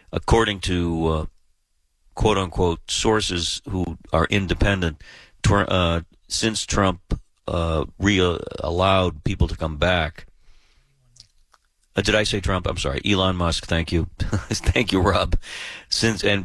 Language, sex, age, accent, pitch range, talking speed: English, male, 40-59, American, 80-100 Hz, 115 wpm